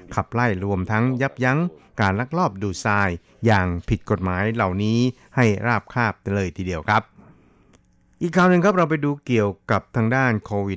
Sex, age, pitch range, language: male, 60-79, 95-120 Hz, Thai